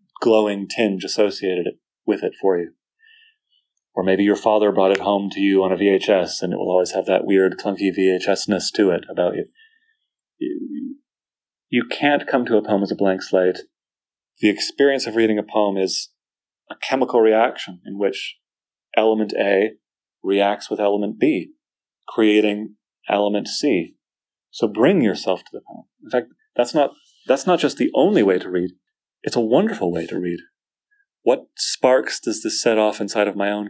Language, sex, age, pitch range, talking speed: English, male, 30-49, 100-140 Hz, 175 wpm